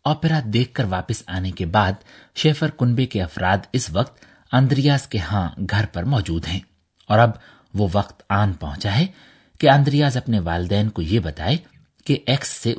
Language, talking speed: Urdu, 175 wpm